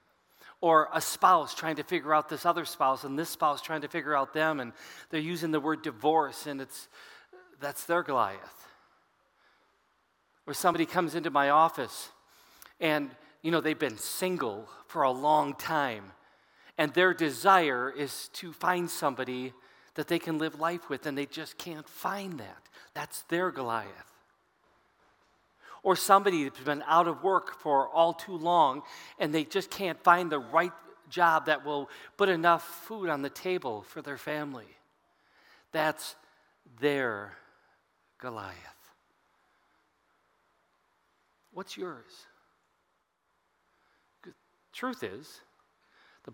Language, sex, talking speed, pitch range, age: English, male, 135 wpm, 145-175 Hz, 40-59